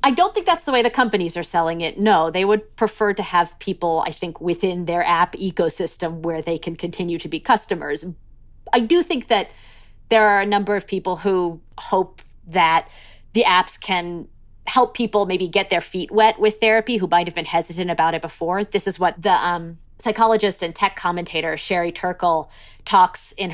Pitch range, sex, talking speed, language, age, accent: 170-210 Hz, female, 195 wpm, English, 30-49, American